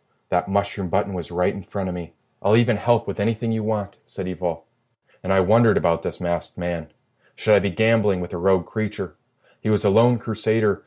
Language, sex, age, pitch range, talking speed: English, male, 30-49, 90-105 Hz, 210 wpm